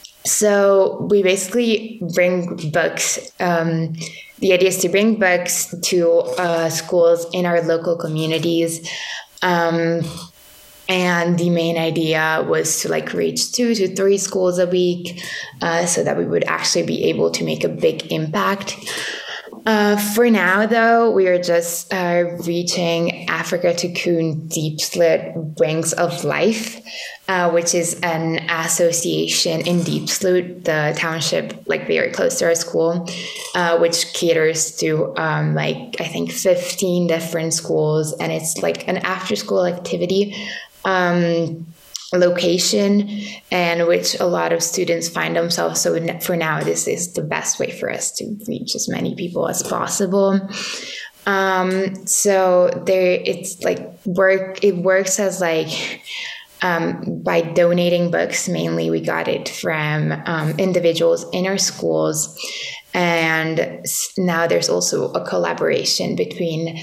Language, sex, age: English, female, 20-39